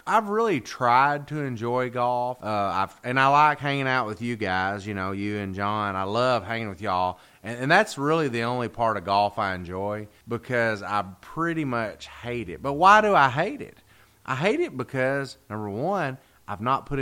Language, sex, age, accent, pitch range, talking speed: English, male, 30-49, American, 100-130 Hz, 200 wpm